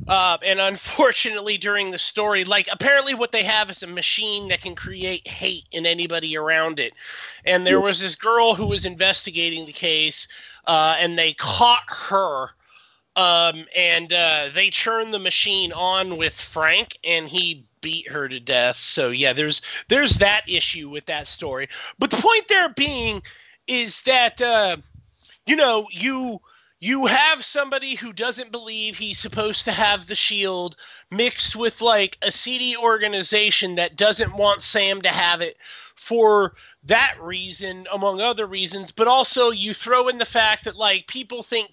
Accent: American